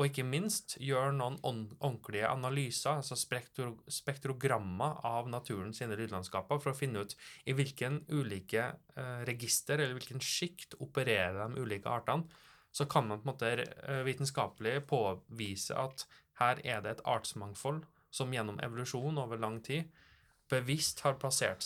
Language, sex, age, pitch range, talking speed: English, male, 20-39, 110-140 Hz, 140 wpm